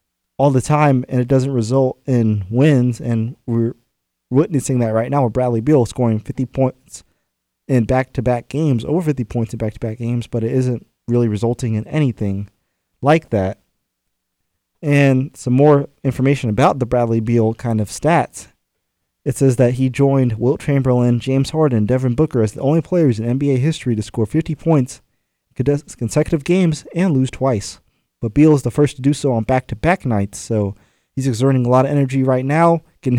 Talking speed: 180 wpm